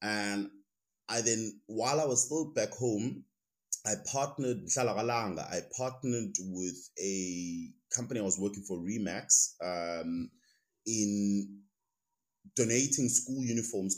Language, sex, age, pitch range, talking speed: English, male, 20-39, 90-110 Hz, 110 wpm